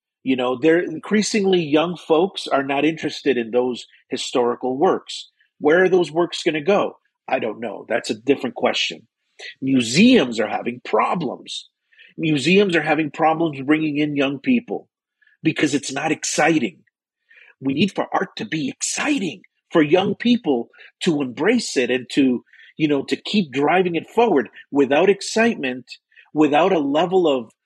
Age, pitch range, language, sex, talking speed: 40-59, 140-205 Hz, English, male, 155 wpm